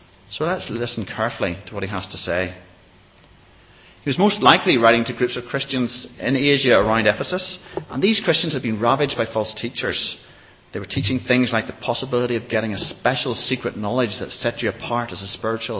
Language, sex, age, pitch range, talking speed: English, male, 30-49, 100-125 Hz, 200 wpm